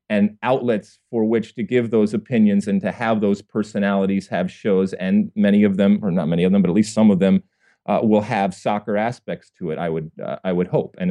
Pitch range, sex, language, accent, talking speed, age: 110-150 Hz, male, English, American, 240 wpm, 40-59